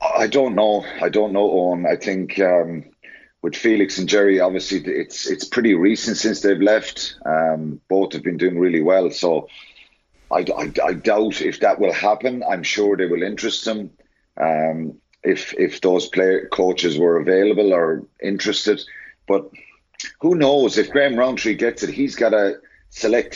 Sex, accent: male, British